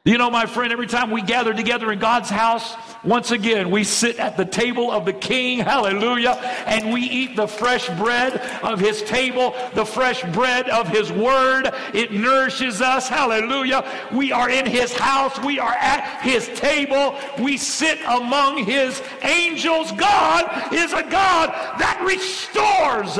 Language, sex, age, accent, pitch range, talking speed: English, male, 60-79, American, 165-255 Hz, 165 wpm